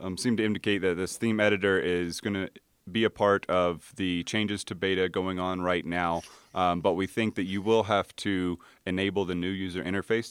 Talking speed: 215 wpm